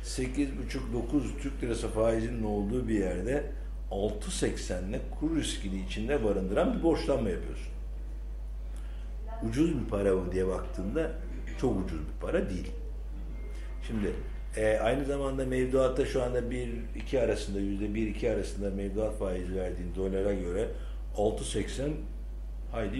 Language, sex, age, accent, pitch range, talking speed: Turkish, male, 60-79, native, 95-130 Hz, 115 wpm